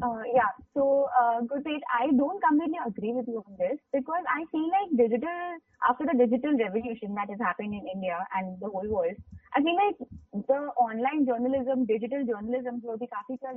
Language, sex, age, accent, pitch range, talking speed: Hindi, female, 20-39, native, 235-275 Hz, 195 wpm